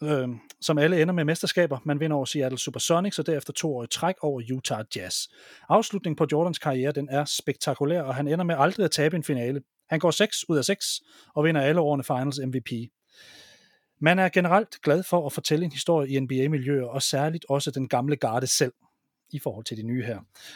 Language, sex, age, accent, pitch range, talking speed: Danish, male, 30-49, native, 140-175 Hz, 205 wpm